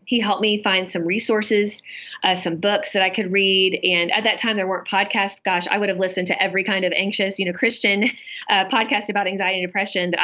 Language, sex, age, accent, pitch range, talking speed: English, female, 20-39, American, 180-215 Hz, 235 wpm